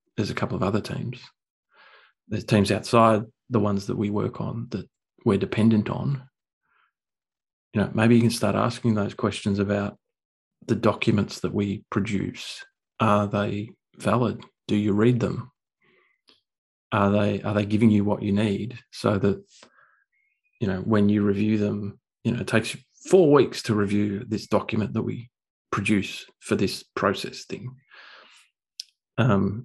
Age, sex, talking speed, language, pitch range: 30-49, male, 155 wpm, English, 105-120 Hz